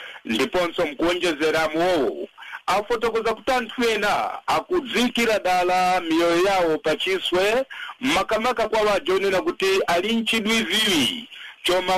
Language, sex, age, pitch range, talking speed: English, male, 50-69, 180-240 Hz, 90 wpm